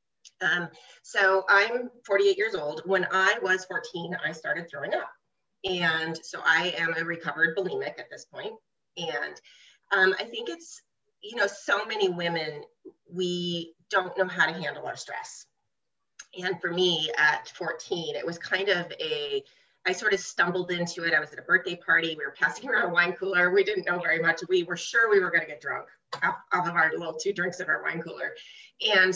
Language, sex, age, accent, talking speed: English, female, 30-49, American, 200 wpm